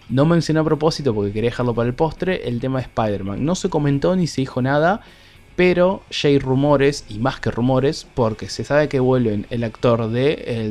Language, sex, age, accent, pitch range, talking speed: Spanish, male, 20-39, Argentinian, 105-145 Hz, 215 wpm